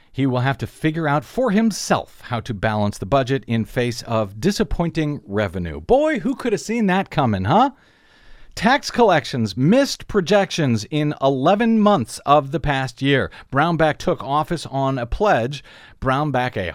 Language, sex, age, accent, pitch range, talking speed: English, male, 50-69, American, 125-200 Hz, 160 wpm